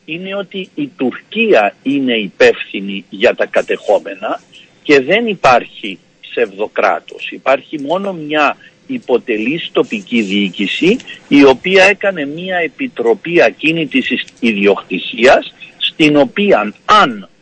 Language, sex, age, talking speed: Greek, male, 50-69, 100 wpm